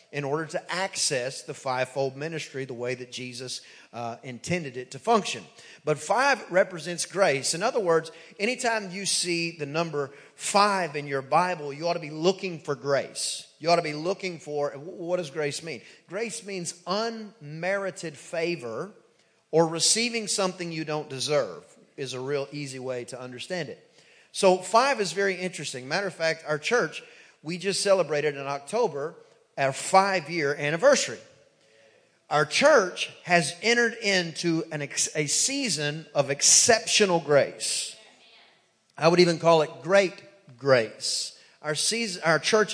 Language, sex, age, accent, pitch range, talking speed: English, male, 40-59, American, 145-190 Hz, 150 wpm